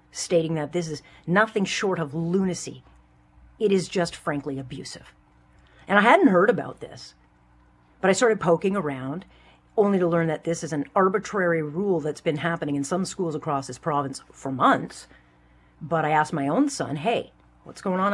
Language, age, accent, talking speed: English, 40-59, American, 180 wpm